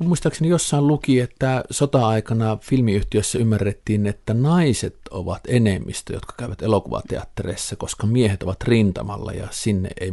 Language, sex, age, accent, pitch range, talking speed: Finnish, male, 50-69, native, 95-115 Hz, 125 wpm